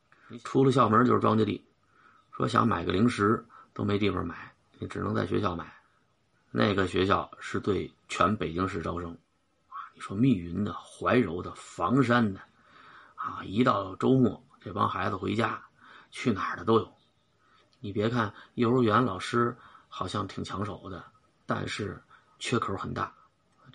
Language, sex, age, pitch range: Chinese, male, 30-49, 100-125 Hz